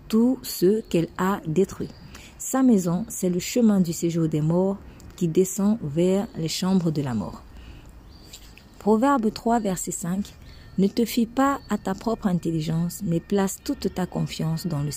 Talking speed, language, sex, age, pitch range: 165 wpm, French, female, 40-59, 155-220 Hz